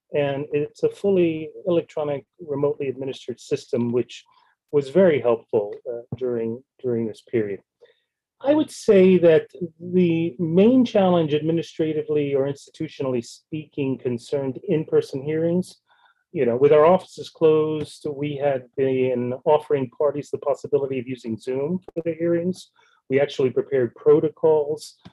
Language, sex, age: English, male, 40-59